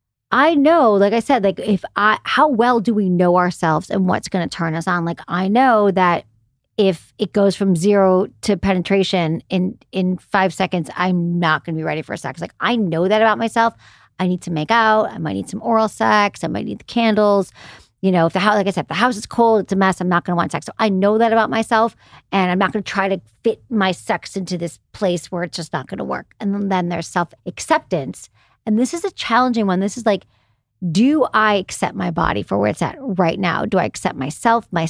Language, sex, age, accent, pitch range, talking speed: English, female, 40-59, American, 175-215 Hz, 250 wpm